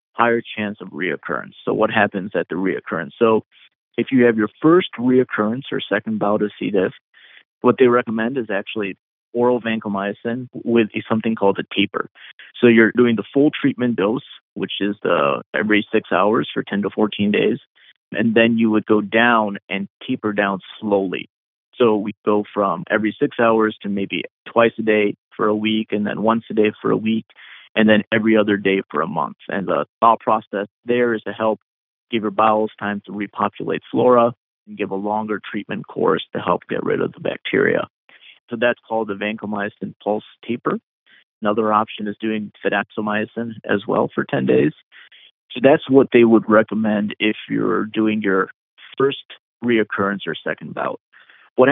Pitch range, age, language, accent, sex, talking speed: 105-115 Hz, 30-49, English, American, male, 180 wpm